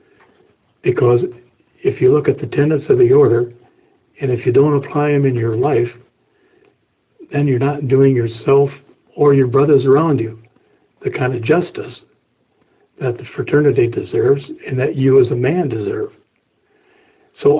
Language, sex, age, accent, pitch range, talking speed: English, male, 60-79, American, 120-140 Hz, 155 wpm